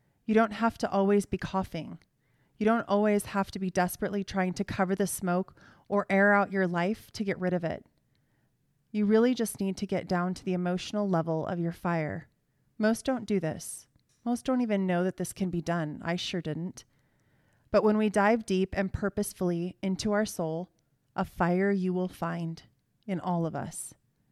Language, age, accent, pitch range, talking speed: English, 30-49, American, 170-205 Hz, 190 wpm